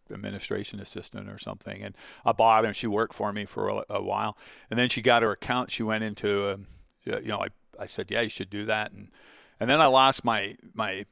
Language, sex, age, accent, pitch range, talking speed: English, male, 50-69, American, 100-115 Hz, 220 wpm